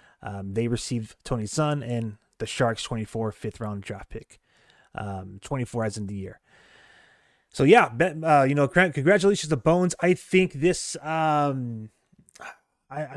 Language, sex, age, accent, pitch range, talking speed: English, male, 30-49, American, 115-145 Hz, 140 wpm